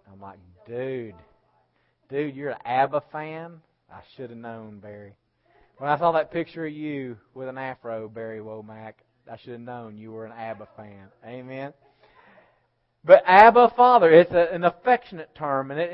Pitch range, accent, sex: 120-155 Hz, American, male